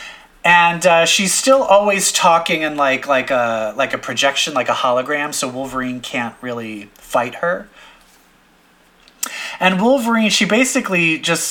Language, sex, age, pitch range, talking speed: English, male, 30-49, 150-205 Hz, 140 wpm